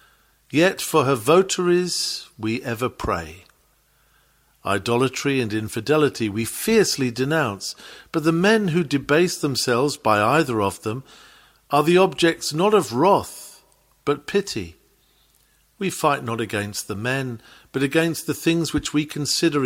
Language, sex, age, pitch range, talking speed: English, male, 50-69, 115-155 Hz, 135 wpm